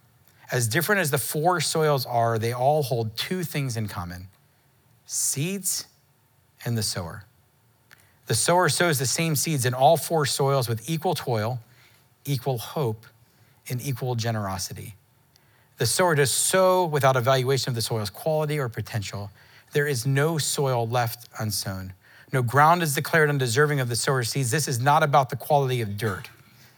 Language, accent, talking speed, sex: English, American, 160 wpm, male